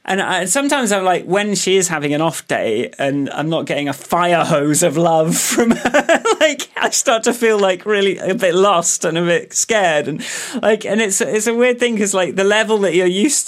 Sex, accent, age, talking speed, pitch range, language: male, British, 30-49, 230 wpm, 140-200 Hz, English